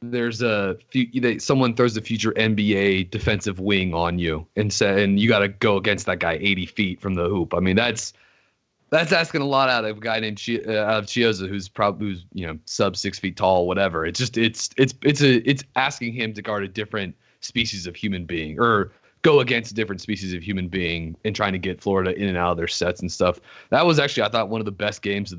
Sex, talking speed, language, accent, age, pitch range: male, 245 wpm, English, American, 30-49, 95-115 Hz